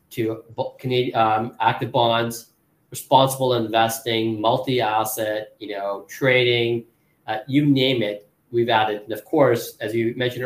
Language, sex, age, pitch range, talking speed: English, male, 40-59, 115-140 Hz, 125 wpm